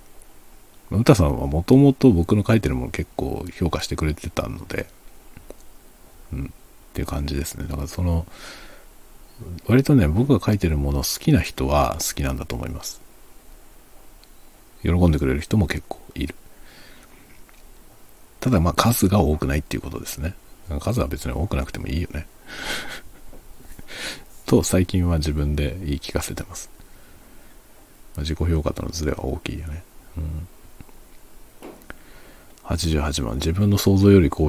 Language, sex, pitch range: Japanese, male, 75-100 Hz